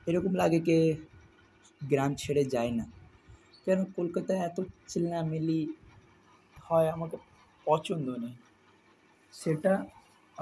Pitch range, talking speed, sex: 115-155 Hz, 110 wpm, male